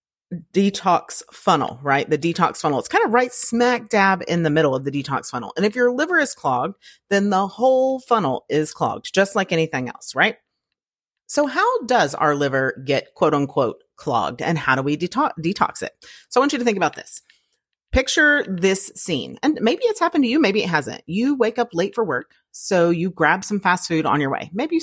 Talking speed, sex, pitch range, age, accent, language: 215 wpm, female, 155-225 Hz, 30-49, American, English